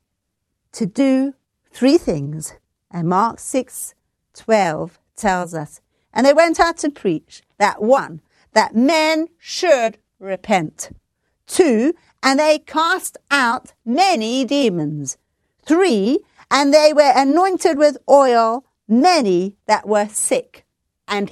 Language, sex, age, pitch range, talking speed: English, female, 50-69, 195-285 Hz, 115 wpm